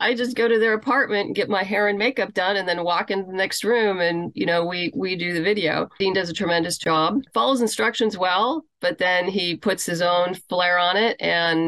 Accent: American